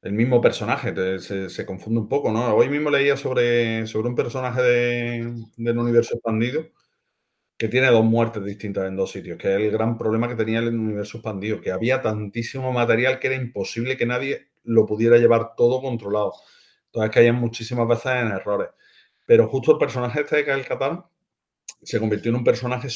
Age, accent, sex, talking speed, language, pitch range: 30-49, Spanish, male, 185 wpm, Spanish, 105-130 Hz